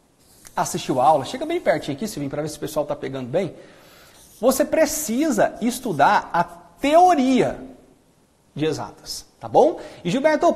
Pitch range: 195-300 Hz